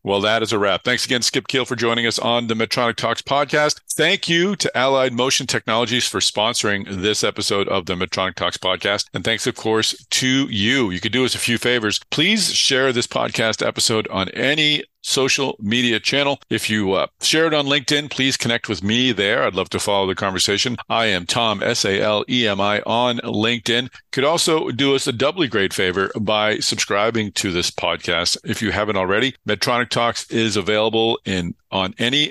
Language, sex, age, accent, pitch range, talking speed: English, male, 50-69, American, 105-135 Hz, 190 wpm